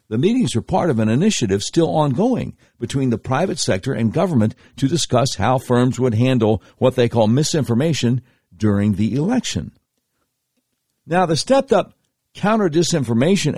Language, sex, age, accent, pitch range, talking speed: English, male, 60-79, American, 110-160 Hz, 140 wpm